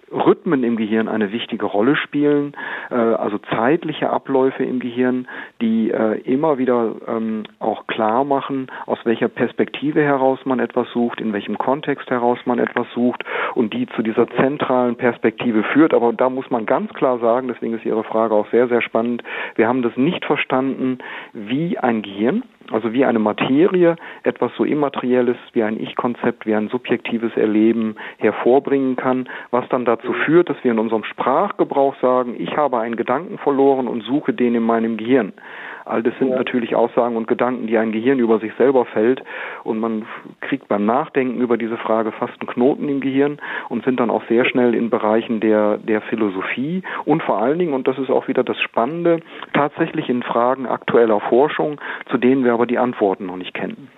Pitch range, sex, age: 115-130 Hz, male, 50-69